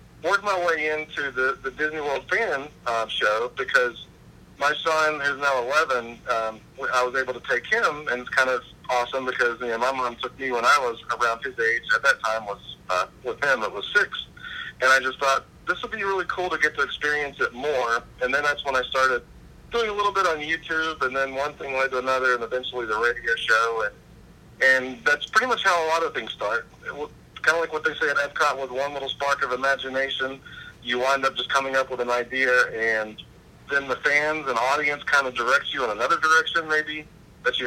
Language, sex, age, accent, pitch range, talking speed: English, male, 40-59, American, 130-195 Hz, 220 wpm